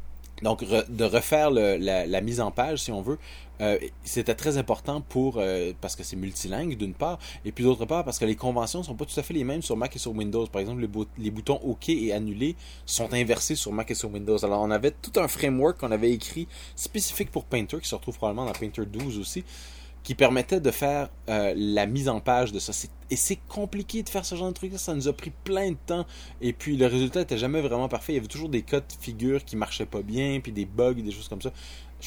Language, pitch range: French, 105-140 Hz